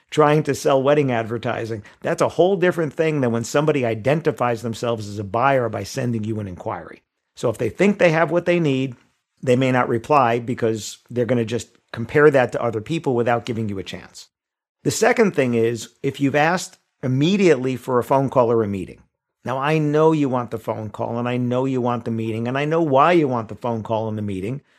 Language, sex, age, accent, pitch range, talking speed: English, male, 50-69, American, 115-150 Hz, 225 wpm